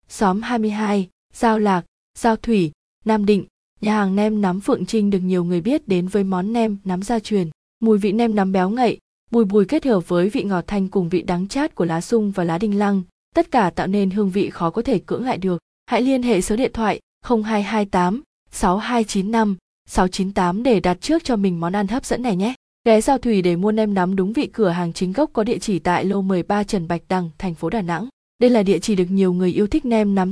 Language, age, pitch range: Vietnamese, 20-39, 185-230 Hz